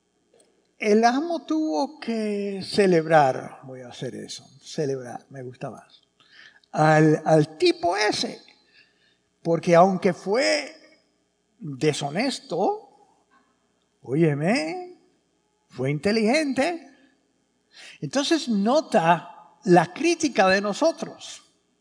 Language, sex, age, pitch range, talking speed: English, male, 60-79, 160-250 Hz, 85 wpm